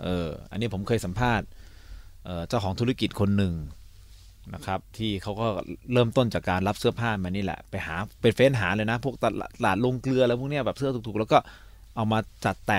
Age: 20-39